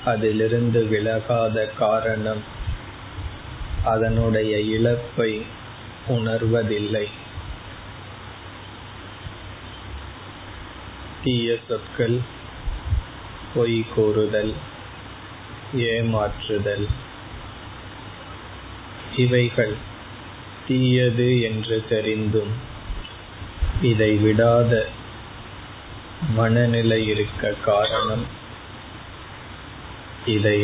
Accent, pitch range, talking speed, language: native, 100-115 Hz, 40 wpm, Tamil